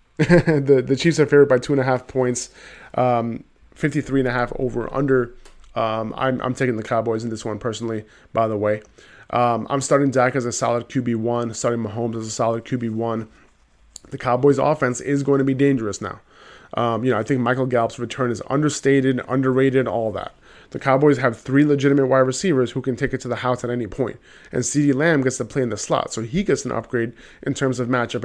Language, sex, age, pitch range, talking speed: English, male, 20-39, 120-135 Hz, 215 wpm